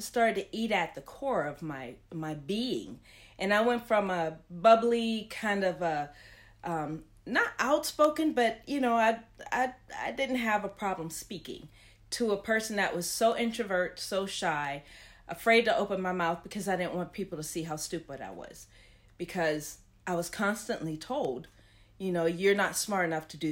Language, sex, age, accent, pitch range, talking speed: English, female, 40-59, American, 155-215 Hz, 180 wpm